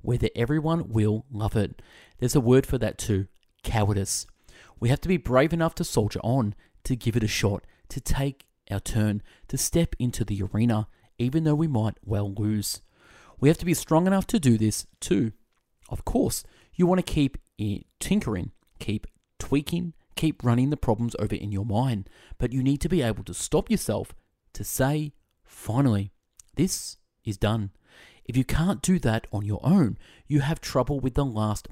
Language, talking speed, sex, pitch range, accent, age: English, 185 wpm, male, 105-140 Hz, Australian, 30-49